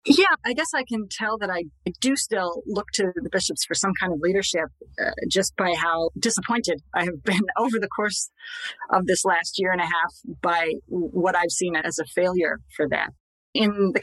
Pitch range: 170-220 Hz